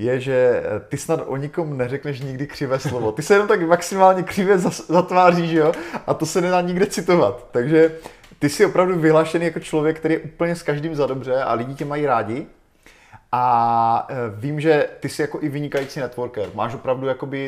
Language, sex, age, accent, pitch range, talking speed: Czech, male, 30-49, native, 120-150 Hz, 190 wpm